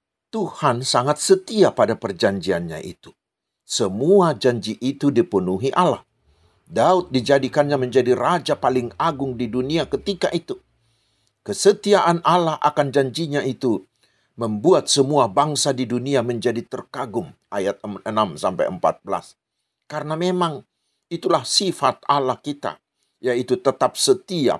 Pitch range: 120-175 Hz